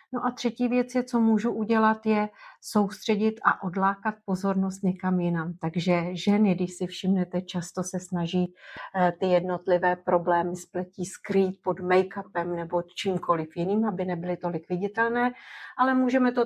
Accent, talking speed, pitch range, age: native, 140 wpm, 180-215 Hz, 40-59